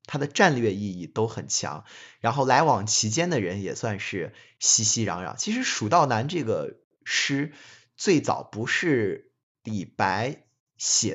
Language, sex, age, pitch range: Chinese, male, 20-39, 110-150 Hz